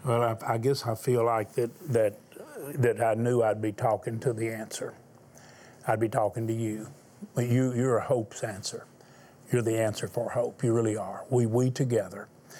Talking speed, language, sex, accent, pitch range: 185 wpm, English, male, American, 115-140 Hz